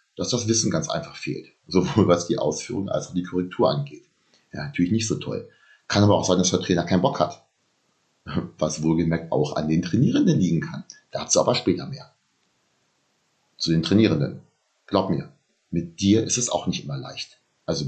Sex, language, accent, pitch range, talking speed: male, German, German, 90-120 Hz, 190 wpm